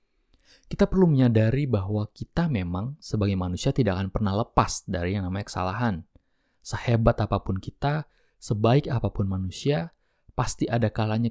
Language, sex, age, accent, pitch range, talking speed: Indonesian, male, 20-39, native, 100-140 Hz, 135 wpm